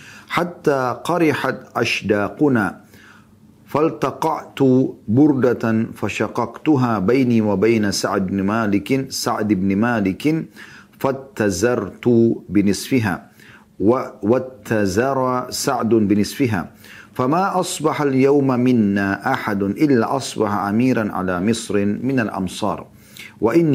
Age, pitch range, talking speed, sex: 40-59, 100-130 Hz, 80 wpm, male